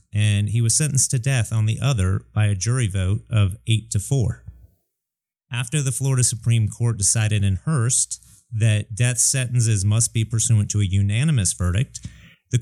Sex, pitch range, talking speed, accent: male, 100-125 Hz, 170 wpm, American